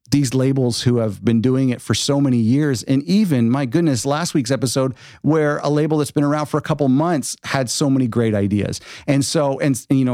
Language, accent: English, American